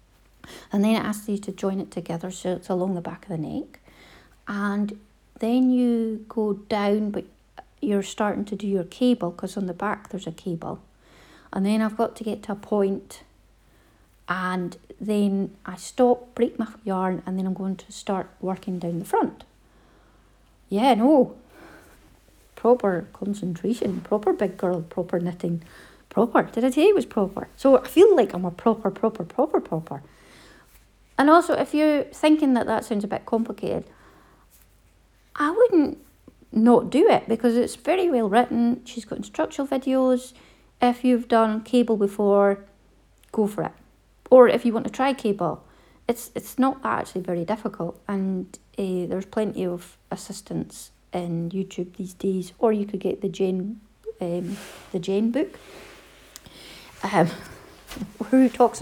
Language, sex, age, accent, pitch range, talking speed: English, female, 40-59, British, 185-240 Hz, 160 wpm